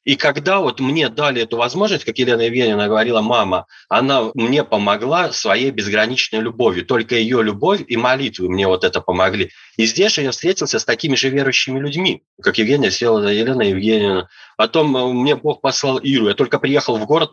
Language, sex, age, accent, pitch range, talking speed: Russian, male, 30-49, native, 110-150 Hz, 180 wpm